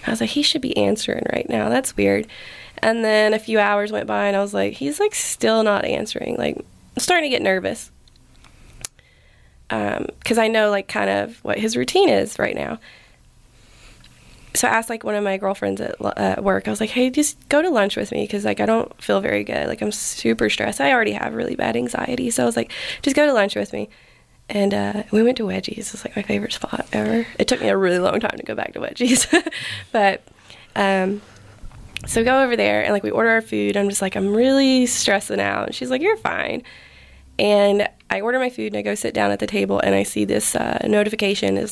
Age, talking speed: 20-39, 235 wpm